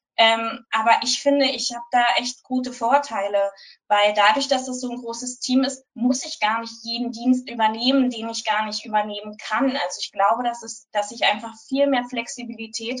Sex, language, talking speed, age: female, German, 200 wpm, 20-39